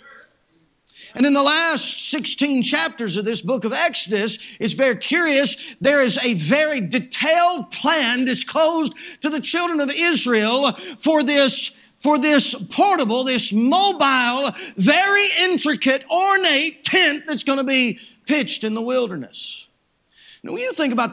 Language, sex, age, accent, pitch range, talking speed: English, male, 50-69, American, 225-305 Hz, 140 wpm